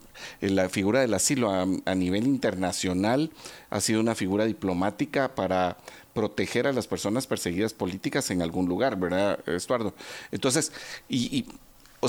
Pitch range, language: 95-125 Hz, Spanish